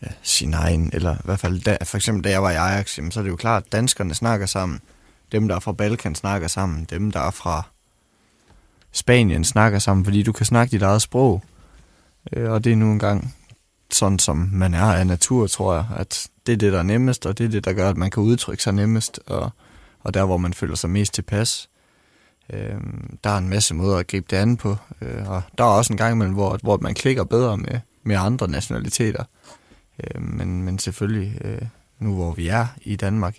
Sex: male